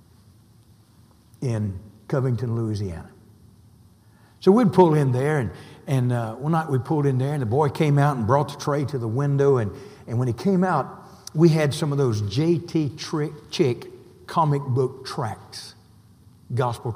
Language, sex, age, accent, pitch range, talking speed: English, male, 60-79, American, 110-140 Hz, 165 wpm